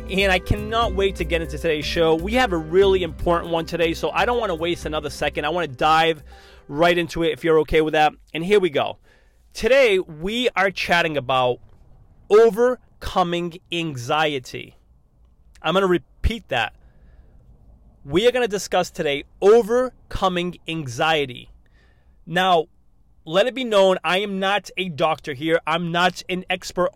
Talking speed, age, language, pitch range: 165 wpm, 30-49, English, 155-205 Hz